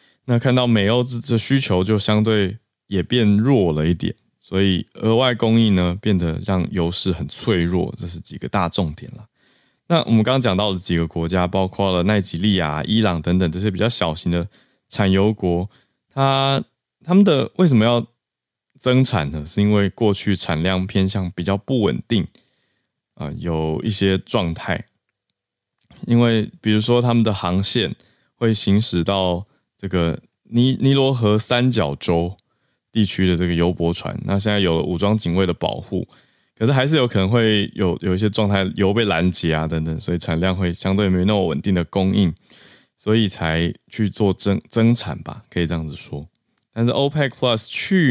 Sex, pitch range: male, 90-115 Hz